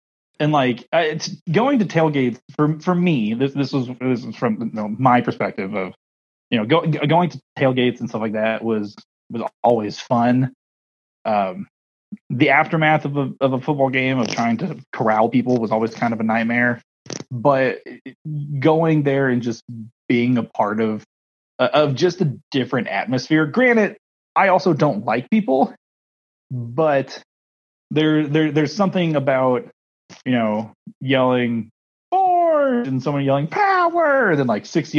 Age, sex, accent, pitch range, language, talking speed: 30-49, male, American, 115-160 Hz, English, 160 wpm